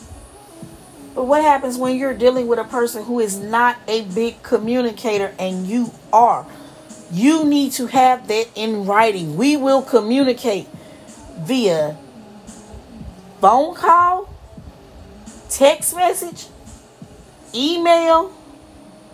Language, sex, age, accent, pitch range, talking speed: English, female, 40-59, American, 200-260 Hz, 105 wpm